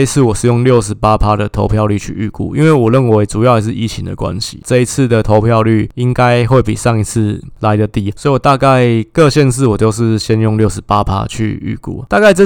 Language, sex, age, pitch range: Chinese, male, 20-39, 110-130 Hz